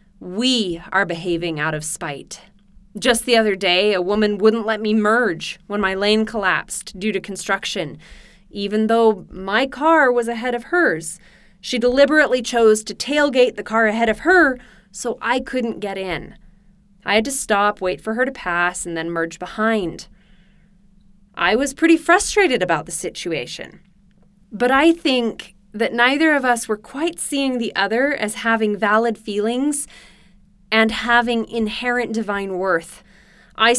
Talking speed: 155 wpm